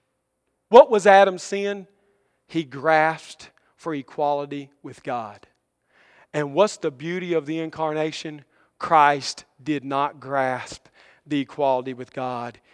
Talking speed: 120 wpm